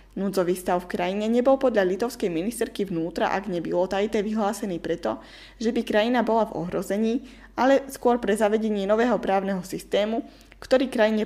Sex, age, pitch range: female, 20-39, 185-225 Hz